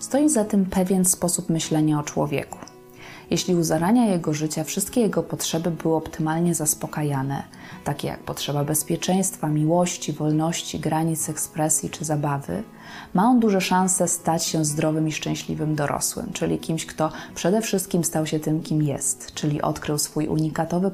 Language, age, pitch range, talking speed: Polish, 20-39, 155-180 Hz, 150 wpm